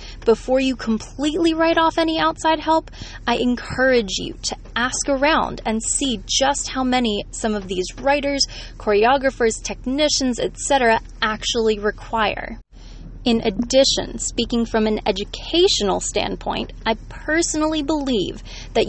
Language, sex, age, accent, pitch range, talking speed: English, female, 20-39, American, 215-265 Hz, 125 wpm